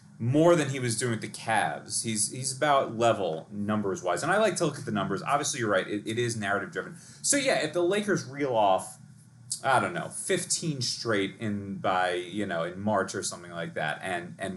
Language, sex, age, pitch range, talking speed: English, male, 30-49, 105-150 Hz, 225 wpm